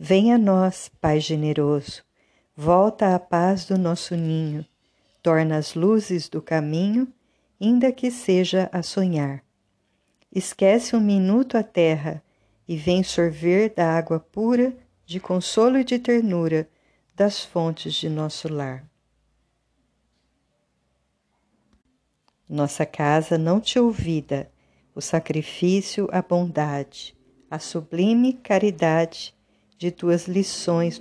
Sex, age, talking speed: female, 50-69, 110 wpm